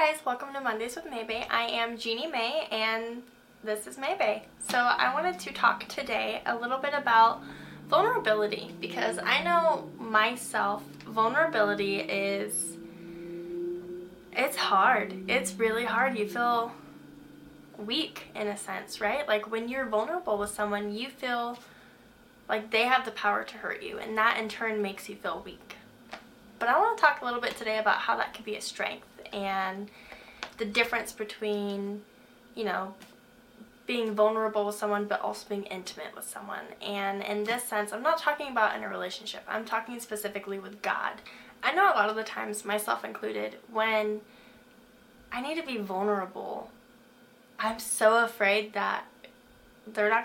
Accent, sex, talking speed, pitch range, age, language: American, female, 165 wpm, 205-245 Hz, 10-29, English